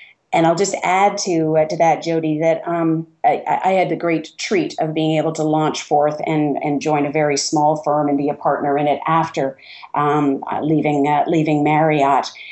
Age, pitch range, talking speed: 40-59, 155-185 Hz, 200 wpm